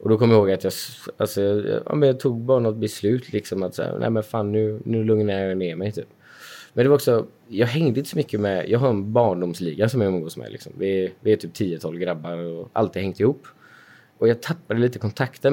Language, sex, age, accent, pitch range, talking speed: Swedish, male, 20-39, native, 95-110 Hz, 245 wpm